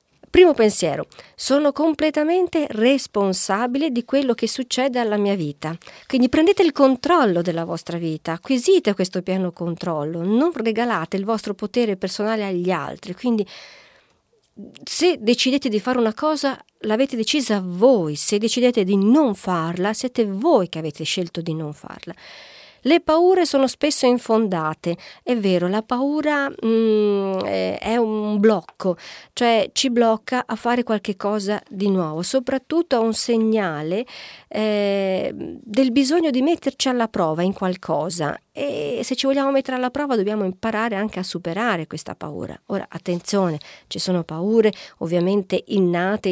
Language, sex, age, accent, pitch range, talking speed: Italian, female, 40-59, native, 185-255 Hz, 140 wpm